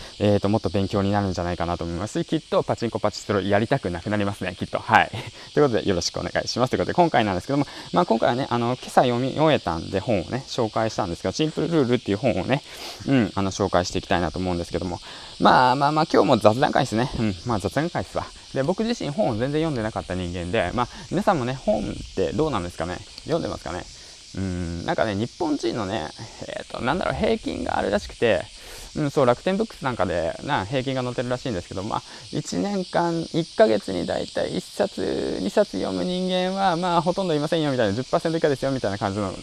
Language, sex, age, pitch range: Japanese, male, 20-39, 95-140 Hz